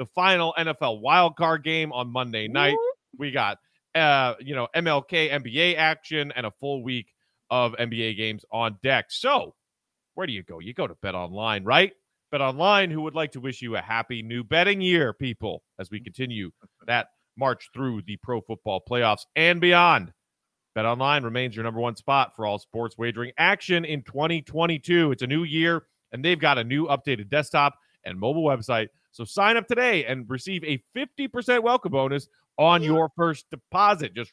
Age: 40-59